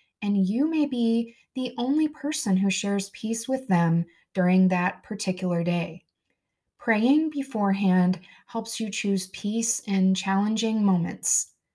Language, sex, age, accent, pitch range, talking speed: English, female, 20-39, American, 185-230 Hz, 130 wpm